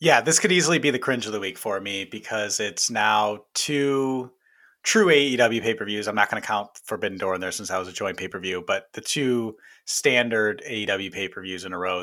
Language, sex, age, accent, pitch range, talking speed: English, male, 30-49, American, 95-110 Hz, 245 wpm